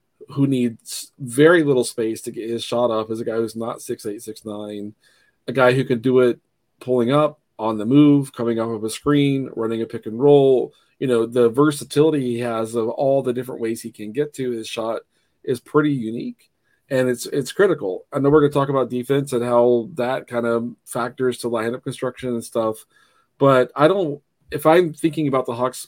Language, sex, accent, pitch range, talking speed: English, male, American, 115-135 Hz, 210 wpm